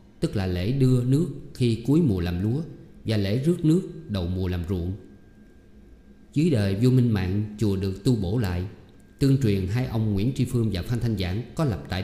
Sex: male